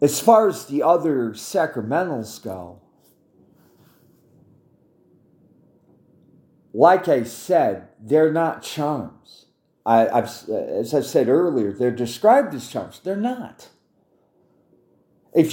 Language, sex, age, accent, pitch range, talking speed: English, male, 40-59, American, 125-185 Hz, 105 wpm